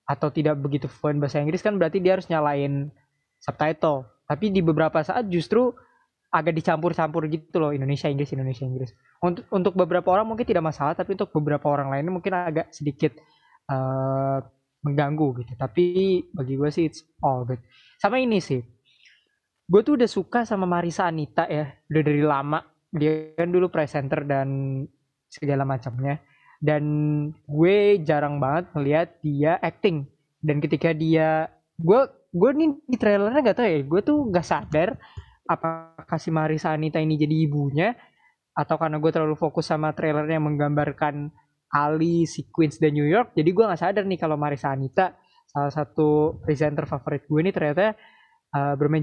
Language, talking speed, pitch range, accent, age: Indonesian, 160 wpm, 145-180 Hz, native, 20-39